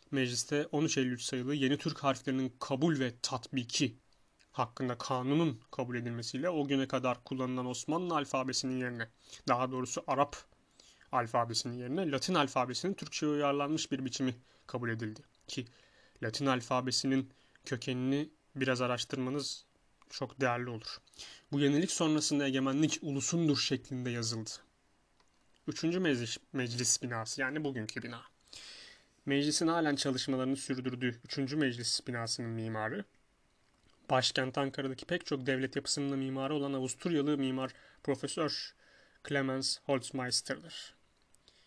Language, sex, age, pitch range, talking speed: Turkish, male, 30-49, 130-145 Hz, 110 wpm